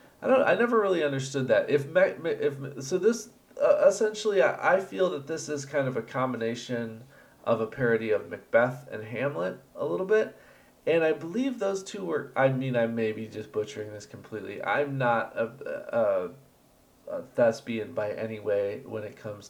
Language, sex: English, male